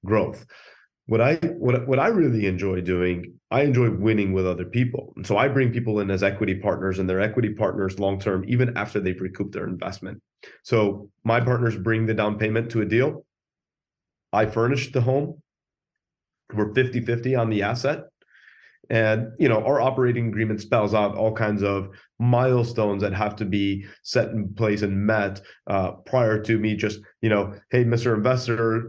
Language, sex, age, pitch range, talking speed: English, male, 30-49, 105-120 Hz, 180 wpm